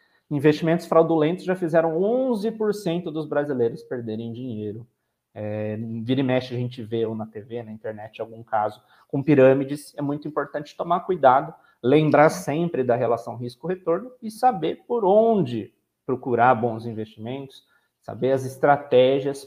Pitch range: 120-170 Hz